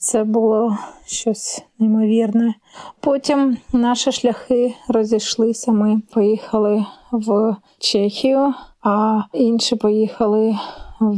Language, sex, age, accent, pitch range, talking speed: Ukrainian, female, 30-49, native, 210-235 Hz, 85 wpm